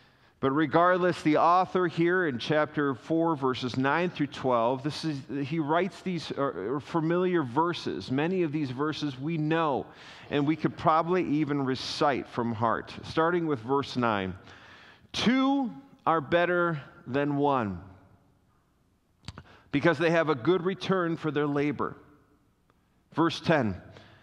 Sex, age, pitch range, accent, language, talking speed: male, 40-59, 130-170 Hz, American, English, 130 wpm